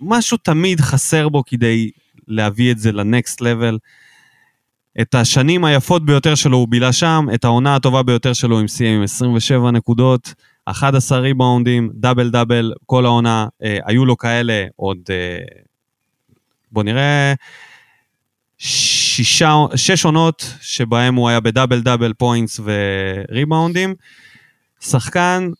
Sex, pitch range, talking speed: male, 115-155 Hz, 120 wpm